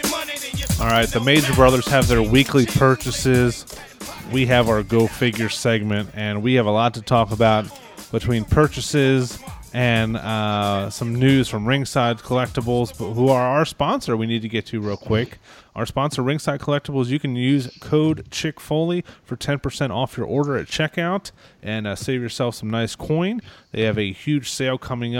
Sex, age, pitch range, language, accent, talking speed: male, 30-49, 105-130 Hz, English, American, 175 wpm